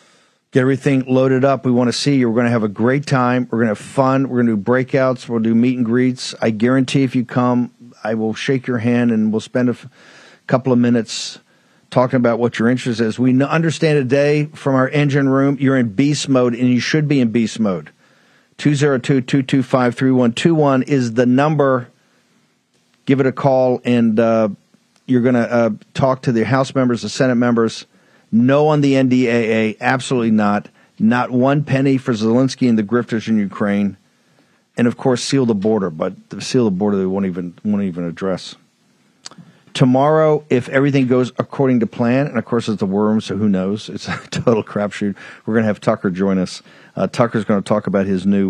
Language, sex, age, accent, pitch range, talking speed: English, male, 50-69, American, 105-135 Hz, 215 wpm